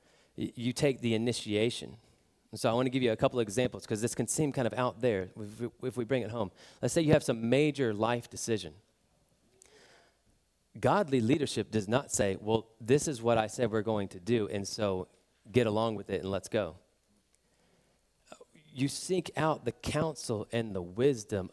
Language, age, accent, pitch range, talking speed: English, 30-49, American, 105-125 Hz, 185 wpm